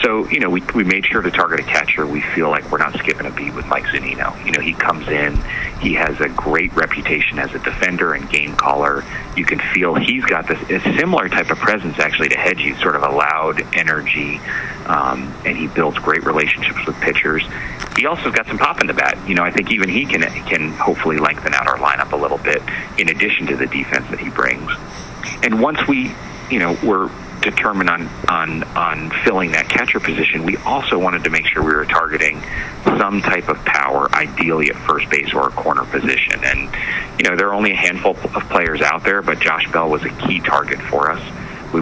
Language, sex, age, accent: English, male, 30-49, American